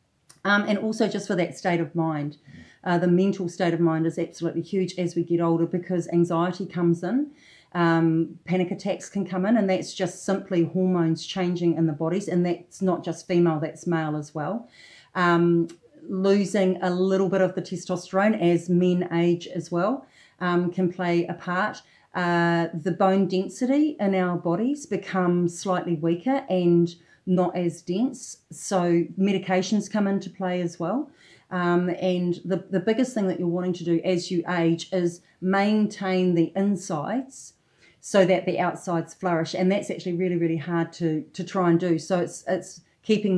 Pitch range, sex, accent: 170-195 Hz, female, Australian